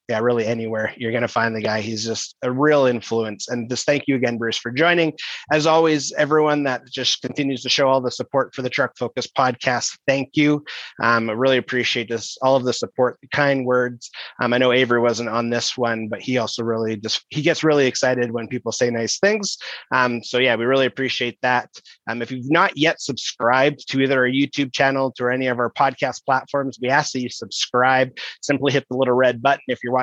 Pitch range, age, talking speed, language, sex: 120-140 Hz, 30-49, 220 wpm, English, male